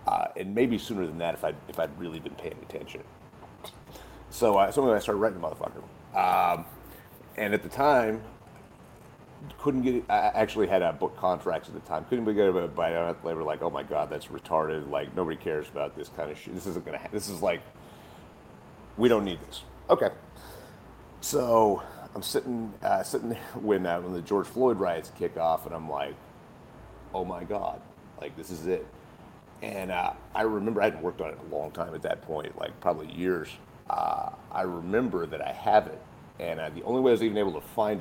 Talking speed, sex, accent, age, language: 210 wpm, male, American, 40-59, English